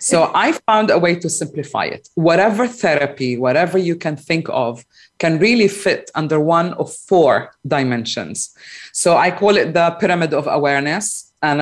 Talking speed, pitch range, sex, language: 165 wpm, 150-190 Hz, female, English